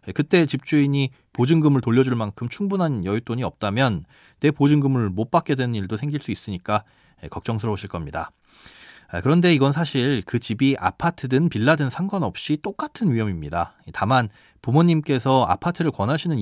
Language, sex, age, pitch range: Korean, male, 30-49, 105-155 Hz